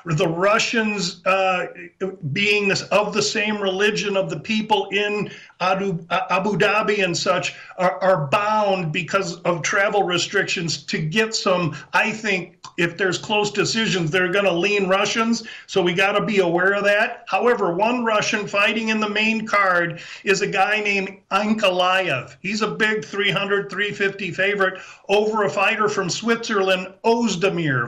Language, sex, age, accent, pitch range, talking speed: English, male, 50-69, American, 180-210 Hz, 150 wpm